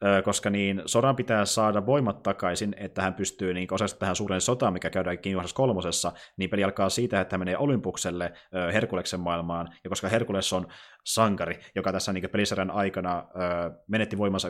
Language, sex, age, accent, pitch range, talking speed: Finnish, male, 20-39, native, 90-100 Hz, 170 wpm